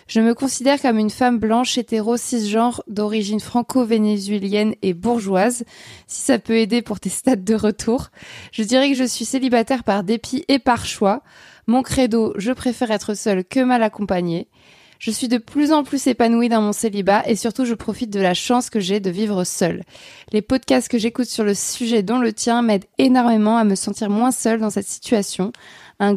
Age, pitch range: 20-39, 210-245 Hz